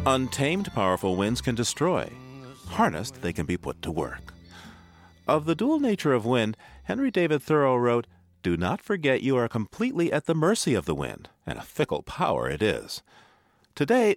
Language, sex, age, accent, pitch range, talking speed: English, male, 40-59, American, 90-145 Hz, 175 wpm